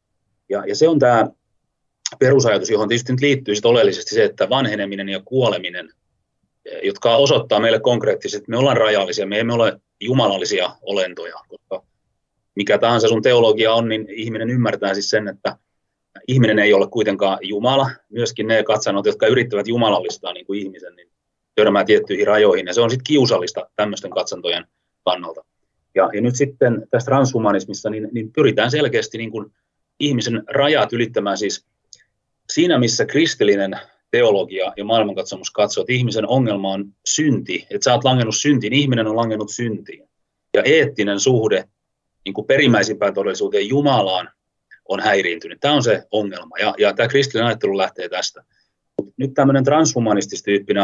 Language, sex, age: Finnish, male, 30-49